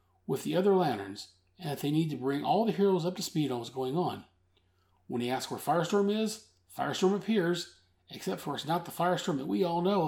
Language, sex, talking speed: English, male, 225 wpm